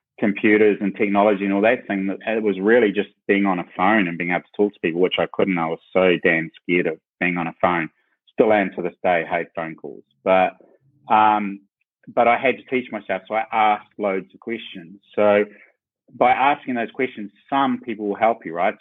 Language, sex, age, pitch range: English, male, 30-49, 95-110 Hz